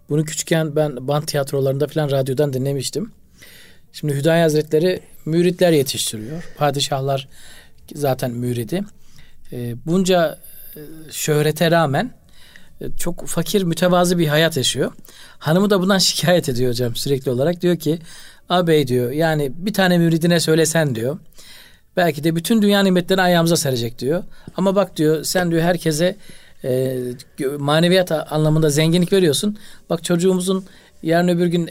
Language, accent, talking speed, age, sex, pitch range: Turkish, native, 125 wpm, 50-69, male, 140-175 Hz